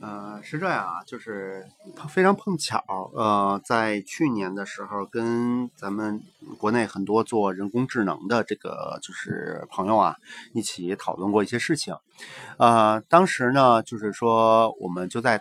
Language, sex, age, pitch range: Chinese, male, 30-49, 100-125 Hz